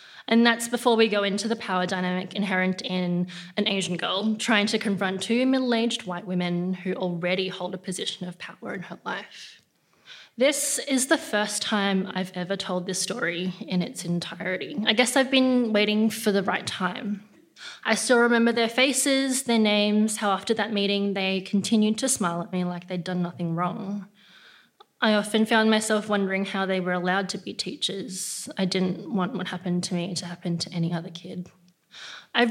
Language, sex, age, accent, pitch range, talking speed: English, female, 20-39, Australian, 185-220 Hz, 185 wpm